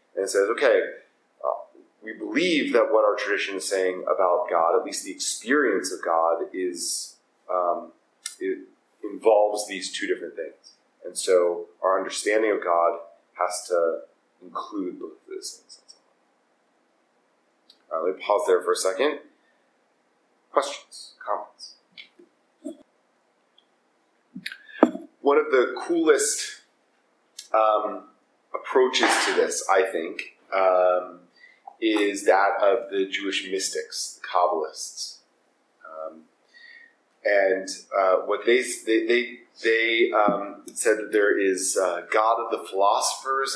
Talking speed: 120 wpm